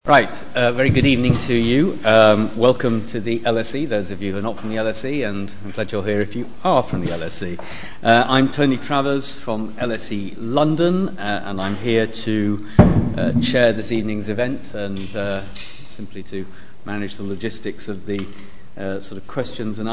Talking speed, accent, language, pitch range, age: 190 wpm, British, English, 105-130 Hz, 50-69